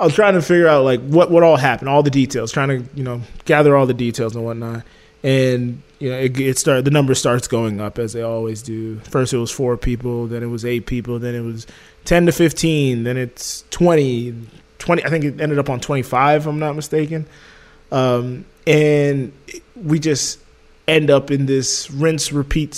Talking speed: 210 wpm